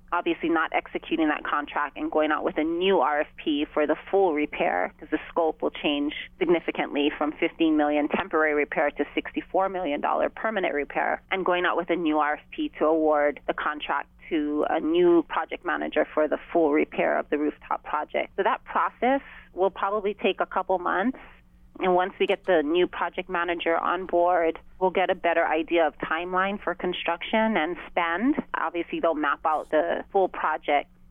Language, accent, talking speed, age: English, American, 175 wpm, 30-49